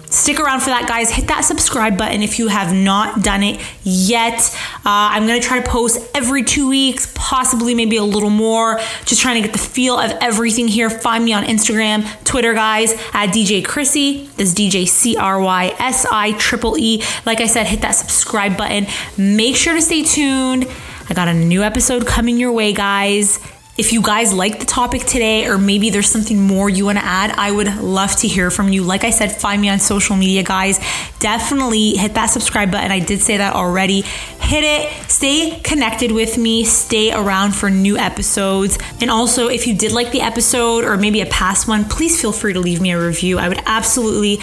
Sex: female